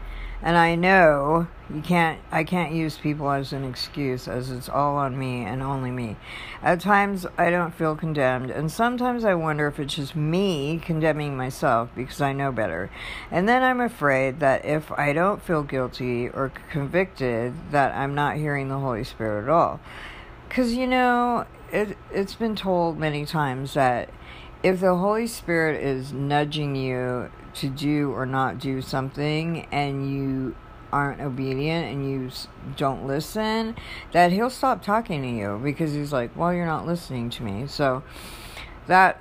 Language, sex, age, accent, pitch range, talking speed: English, female, 60-79, American, 130-170 Hz, 165 wpm